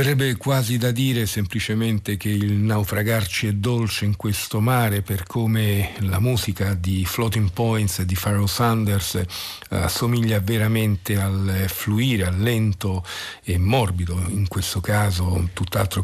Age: 50-69